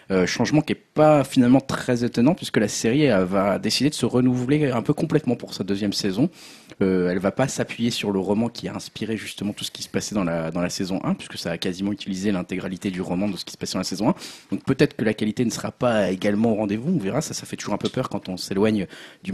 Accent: French